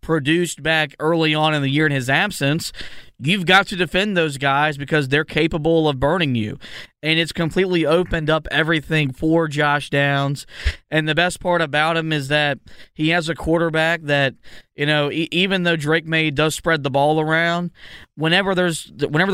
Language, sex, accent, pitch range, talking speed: English, male, American, 140-165 Hz, 180 wpm